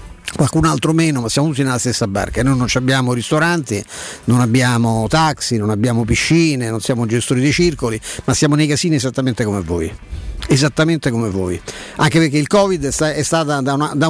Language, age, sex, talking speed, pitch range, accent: Italian, 50-69, male, 175 wpm, 120-150 Hz, native